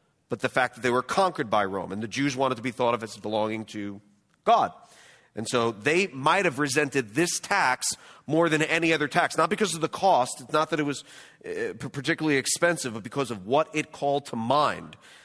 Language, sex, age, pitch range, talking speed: English, male, 30-49, 110-155 Hz, 210 wpm